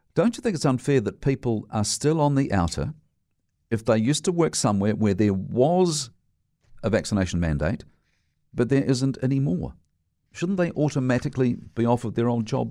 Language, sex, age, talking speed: English, male, 50-69, 175 wpm